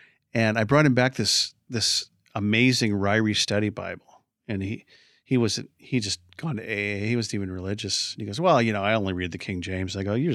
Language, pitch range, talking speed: English, 95-115 Hz, 220 wpm